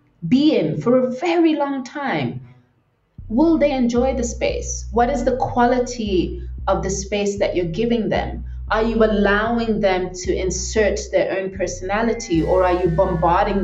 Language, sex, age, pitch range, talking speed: English, female, 30-49, 175-240 Hz, 160 wpm